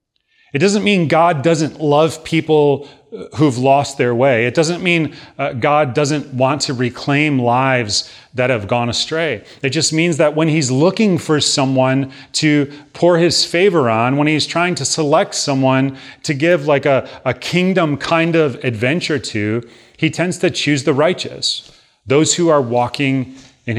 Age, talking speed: 30-49, 165 wpm